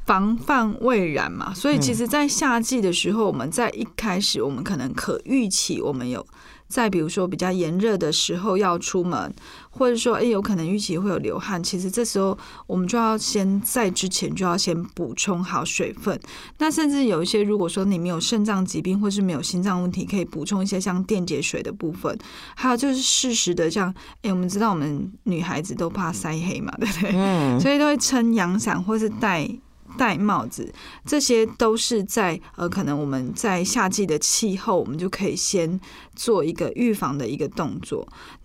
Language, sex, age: Chinese, female, 20-39